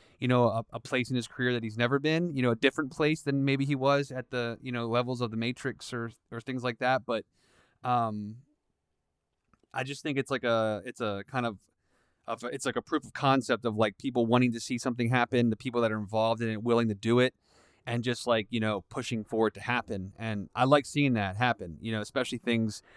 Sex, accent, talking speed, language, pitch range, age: male, American, 240 wpm, English, 110-130 Hz, 20-39